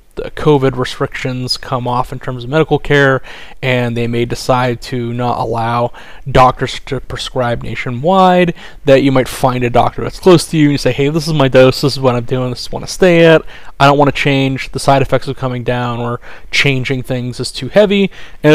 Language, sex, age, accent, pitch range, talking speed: English, male, 30-49, American, 120-140 Hz, 220 wpm